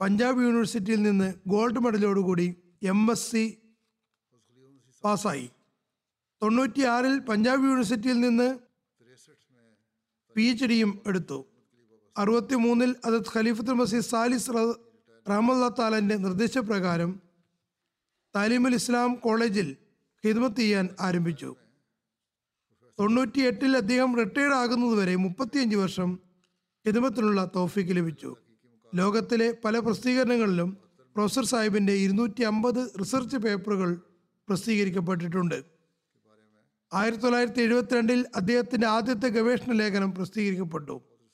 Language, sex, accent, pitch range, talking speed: Malayalam, male, native, 180-240 Hz, 85 wpm